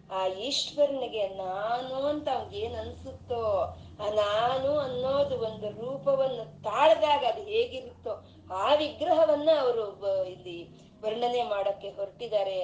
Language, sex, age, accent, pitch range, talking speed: Kannada, female, 30-49, native, 200-280 Hz, 95 wpm